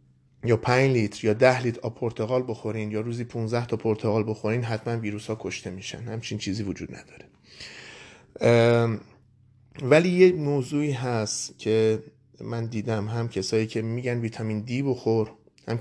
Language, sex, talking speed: Persian, male, 140 wpm